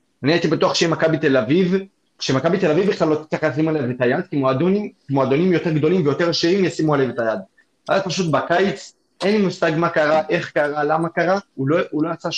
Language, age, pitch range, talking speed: Hebrew, 20-39, 120-170 Hz, 210 wpm